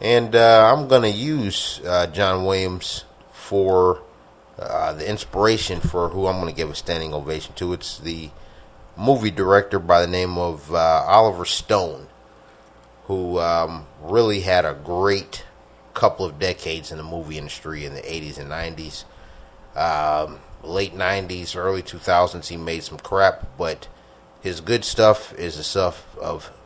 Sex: male